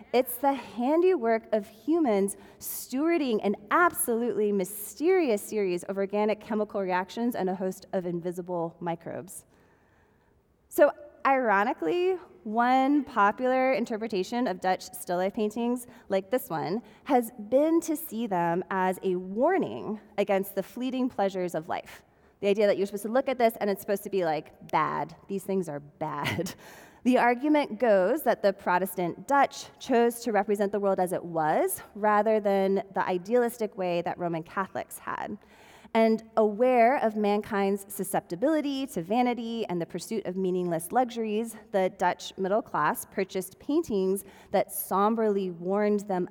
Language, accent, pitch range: English, American, 190-240 Hz